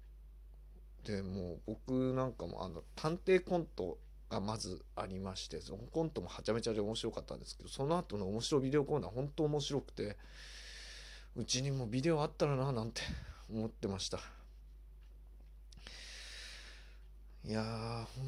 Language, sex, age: Japanese, male, 20-39